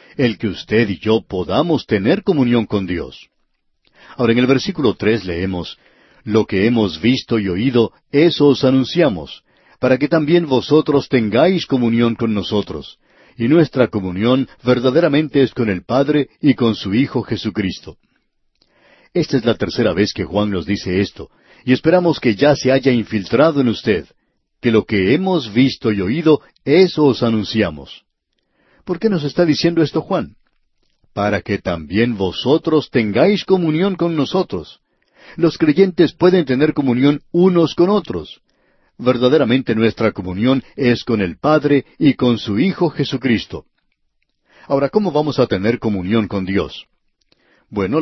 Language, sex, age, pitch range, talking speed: Spanish, male, 50-69, 110-150 Hz, 150 wpm